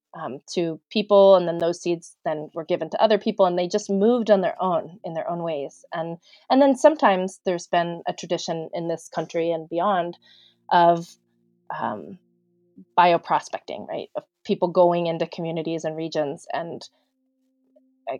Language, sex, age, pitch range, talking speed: English, female, 30-49, 165-210 Hz, 165 wpm